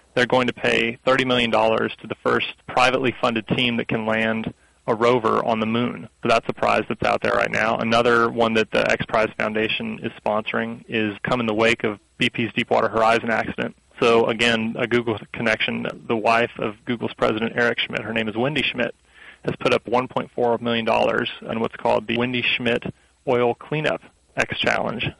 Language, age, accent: English, 30-49, American